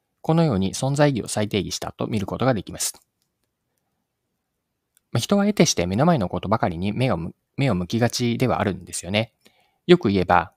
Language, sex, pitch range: Japanese, male, 95-135 Hz